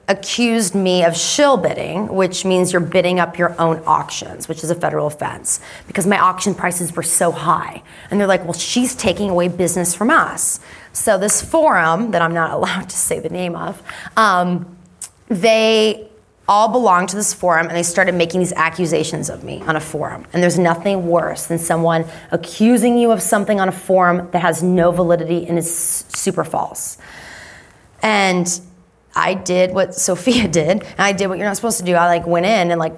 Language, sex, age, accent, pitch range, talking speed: English, female, 20-39, American, 175-210 Hz, 195 wpm